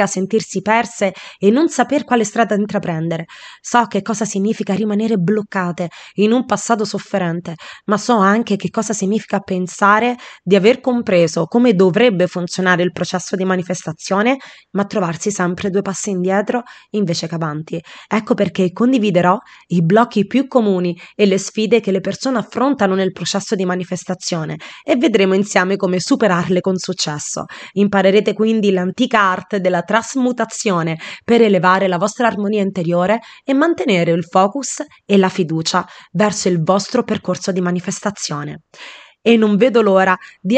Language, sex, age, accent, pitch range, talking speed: Italian, female, 20-39, native, 185-225 Hz, 145 wpm